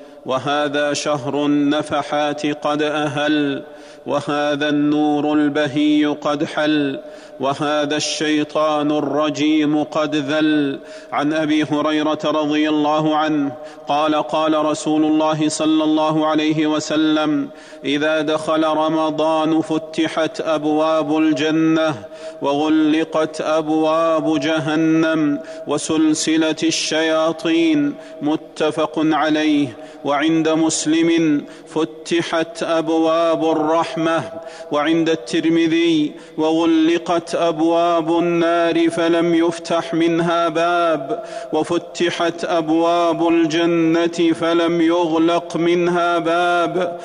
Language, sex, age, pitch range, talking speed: Arabic, male, 40-59, 155-170 Hz, 80 wpm